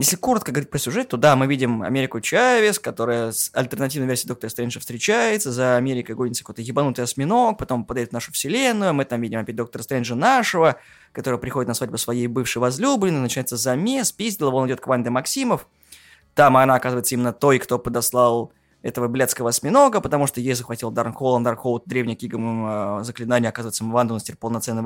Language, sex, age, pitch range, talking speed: Russian, male, 20-39, 120-175 Hz, 185 wpm